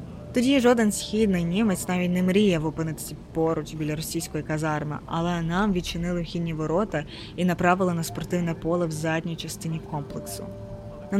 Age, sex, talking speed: 20-39, female, 145 wpm